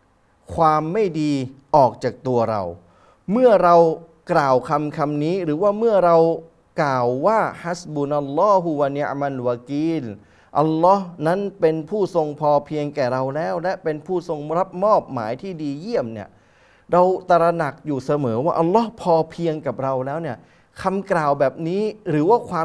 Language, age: Thai, 20-39